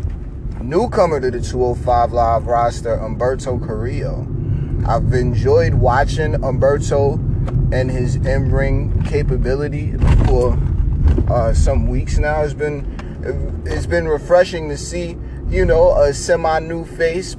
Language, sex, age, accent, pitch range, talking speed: English, male, 30-49, American, 120-160 Hz, 115 wpm